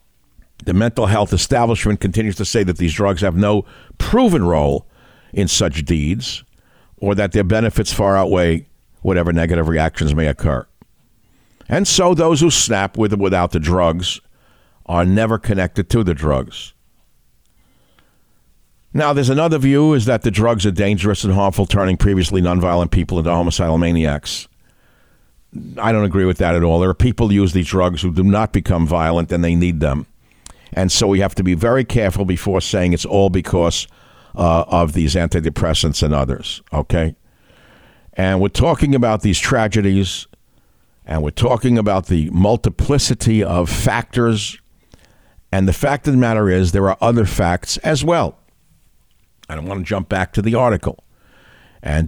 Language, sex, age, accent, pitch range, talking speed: English, male, 60-79, American, 85-110 Hz, 165 wpm